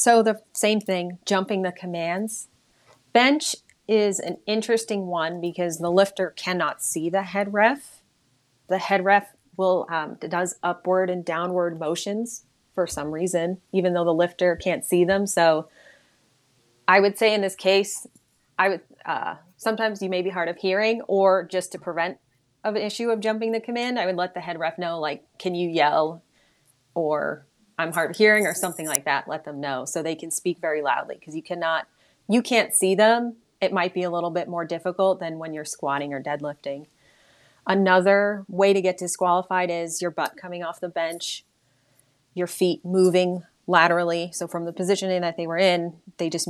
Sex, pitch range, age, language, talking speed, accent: female, 165-195 Hz, 30-49, English, 185 wpm, American